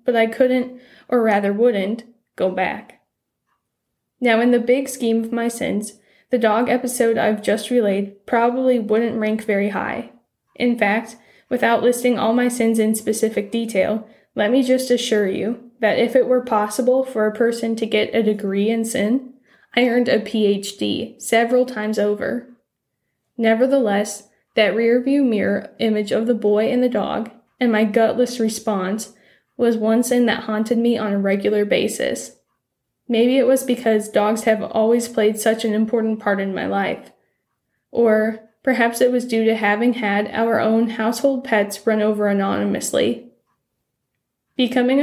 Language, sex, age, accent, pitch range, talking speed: English, female, 10-29, American, 215-245 Hz, 160 wpm